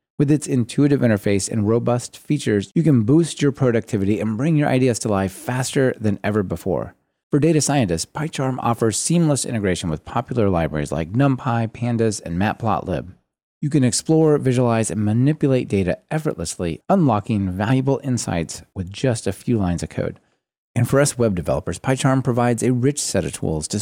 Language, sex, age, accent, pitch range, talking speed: English, male, 30-49, American, 95-135 Hz, 170 wpm